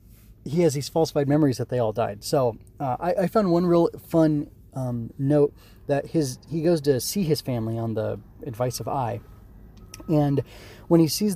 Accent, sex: American, male